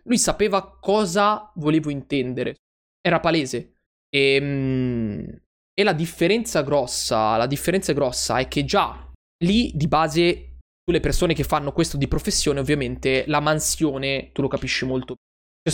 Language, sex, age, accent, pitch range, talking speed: Italian, male, 20-39, native, 130-160 Hz, 135 wpm